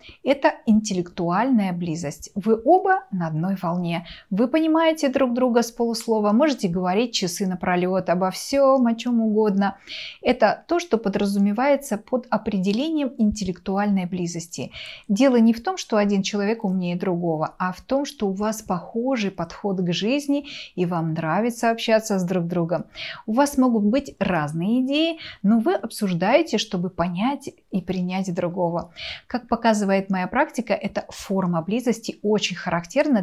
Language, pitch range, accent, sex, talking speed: Russian, 180-245 Hz, native, female, 145 wpm